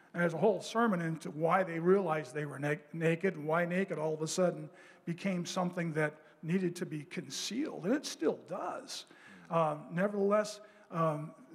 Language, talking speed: English, 165 wpm